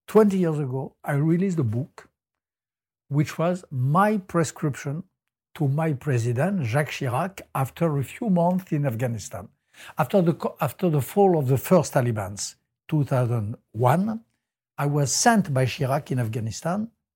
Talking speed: 135 wpm